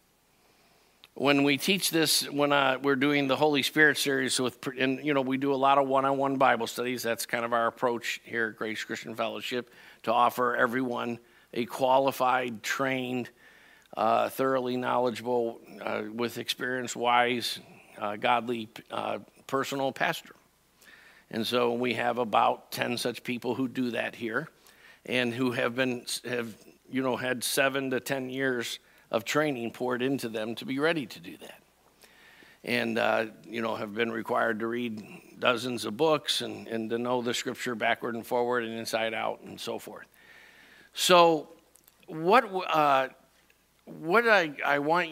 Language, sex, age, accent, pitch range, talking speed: English, male, 50-69, American, 120-140 Hz, 160 wpm